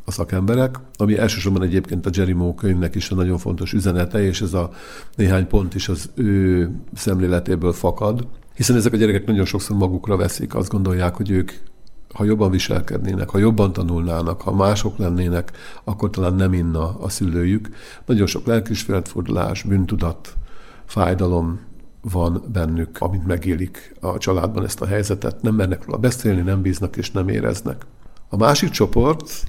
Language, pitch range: Hungarian, 90-105 Hz